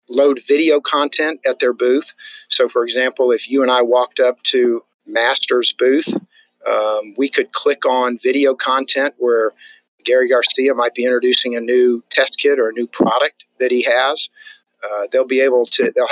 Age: 50-69